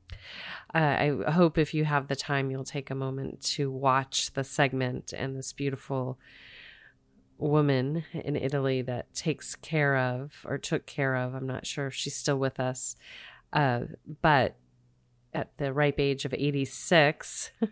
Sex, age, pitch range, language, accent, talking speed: female, 30-49, 135-150 Hz, English, American, 155 wpm